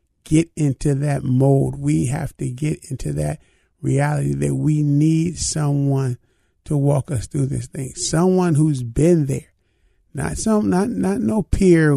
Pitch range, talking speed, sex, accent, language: 130-150 Hz, 155 wpm, male, American, English